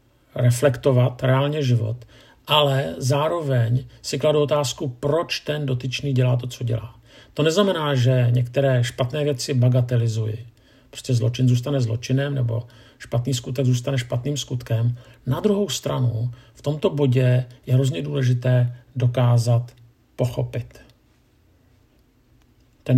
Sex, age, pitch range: male, 50-69, 120-140 Hz